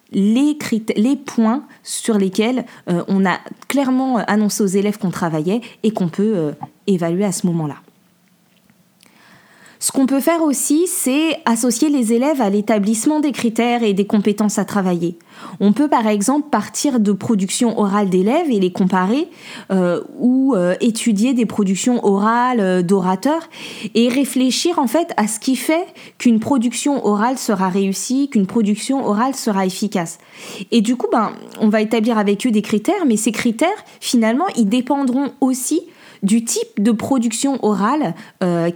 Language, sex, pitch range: French, female, 190-250 Hz